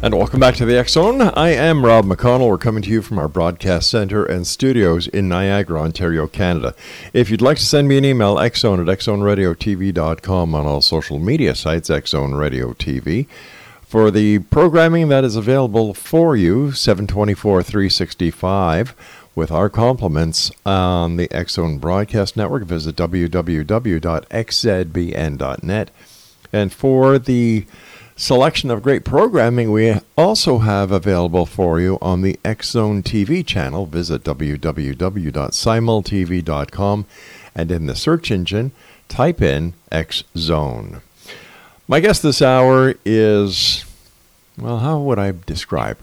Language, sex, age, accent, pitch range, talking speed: English, male, 50-69, American, 85-115 Hz, 130 wpm